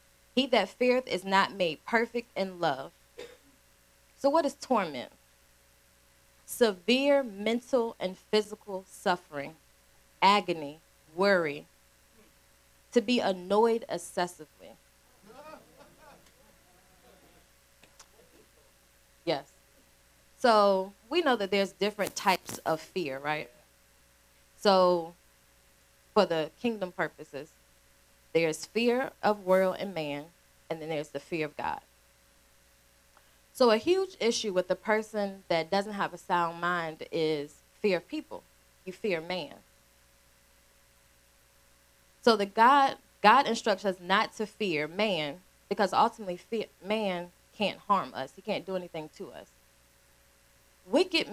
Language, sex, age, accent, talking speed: English, female, 20-39, American, 110 wpm